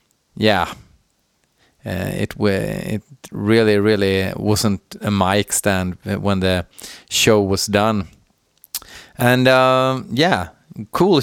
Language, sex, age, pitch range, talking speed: Swedish, male, 30-49, 105-140 Hz, 105 wpm